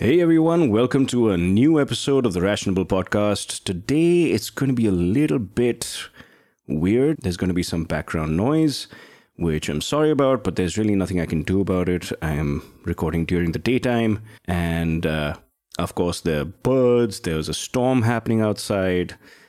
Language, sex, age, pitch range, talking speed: English, male, 30-49, 85-120 Hz, 175 wpm